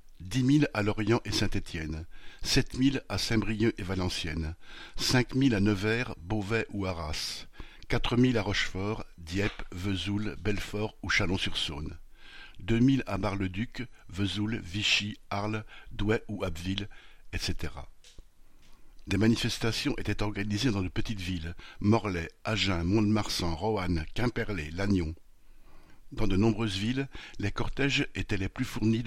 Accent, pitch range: French, 95-110 Hz